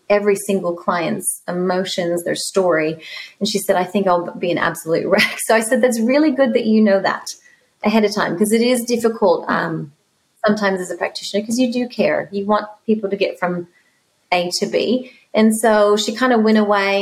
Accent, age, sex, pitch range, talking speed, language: American, 30-49, female, 185-240 Hz, 205 wpm, English